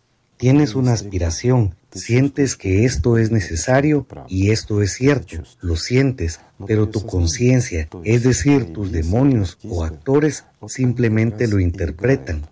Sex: male